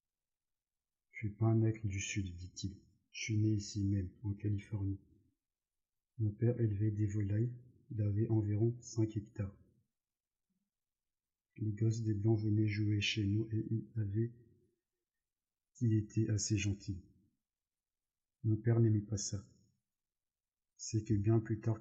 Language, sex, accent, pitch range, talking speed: French, male, French, 105-115 Hz, 140 wpm